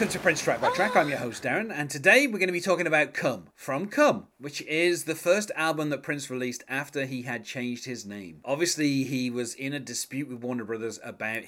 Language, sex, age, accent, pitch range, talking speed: English, male, 30-49, British, 115-145 Hz, 235 wpm